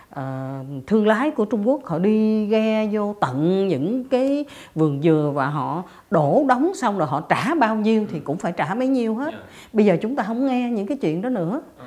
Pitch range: 155-240 Hz